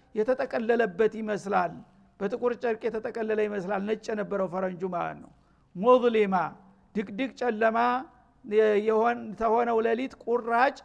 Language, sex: Amharic, male